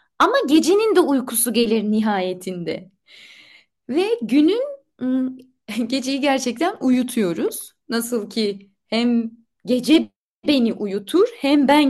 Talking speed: 100 wpm